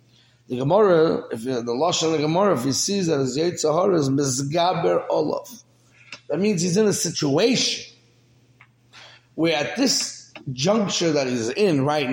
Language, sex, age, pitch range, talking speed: English, male, 30-49, 125-205 Hz, 160 wpm